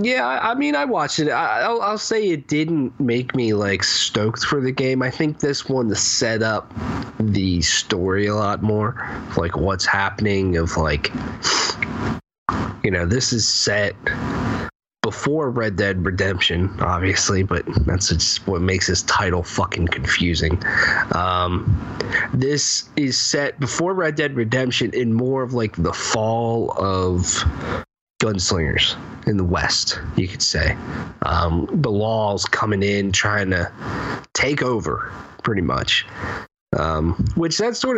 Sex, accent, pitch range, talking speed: male, American, 95-130 Hz, 140 wpm